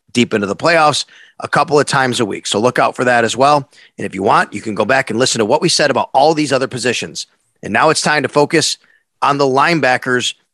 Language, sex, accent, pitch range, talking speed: English, male, American, 130-170 Hz, 255 wpm